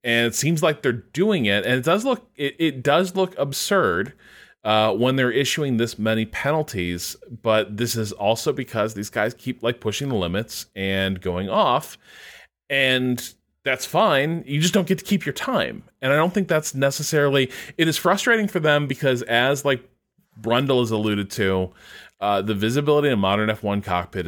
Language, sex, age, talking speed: English, male, 20-39, 190 wpm